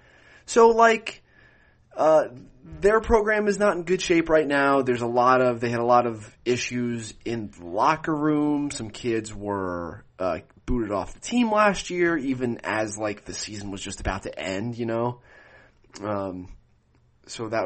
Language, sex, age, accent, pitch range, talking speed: English, male, 30-49, American, 95-125 Hz, 175 wpm